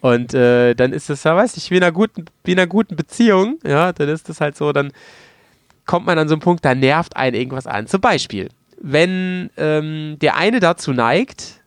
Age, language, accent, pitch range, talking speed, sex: 30-49, German, German, 125-165 Hz, 215 wpm, male